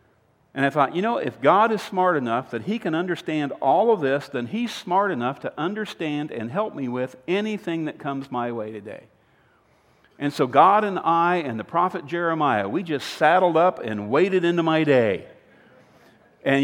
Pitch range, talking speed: 135-190 Hz, 190 wpm